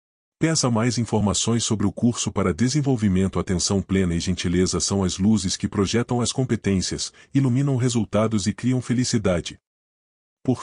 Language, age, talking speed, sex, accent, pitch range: Portuguese, 40-59, 140 wpm, male, Brazilian, 95-120 Hz